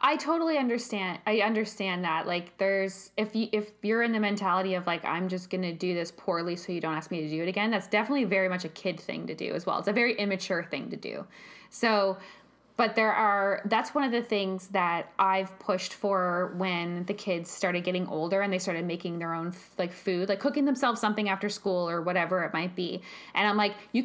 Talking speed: 235 wpm